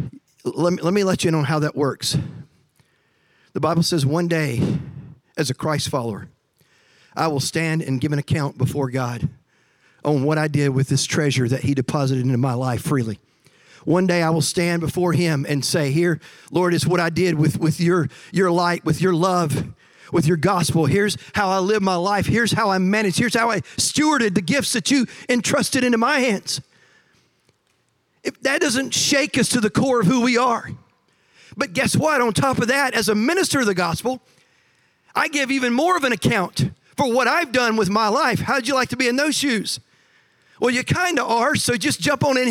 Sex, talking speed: male, 210 wpm